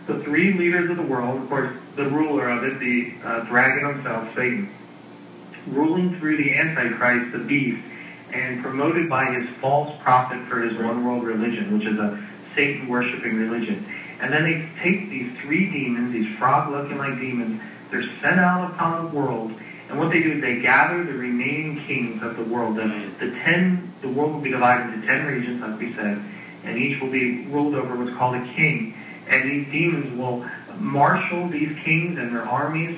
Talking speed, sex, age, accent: 185 wpm, male, 40-59, American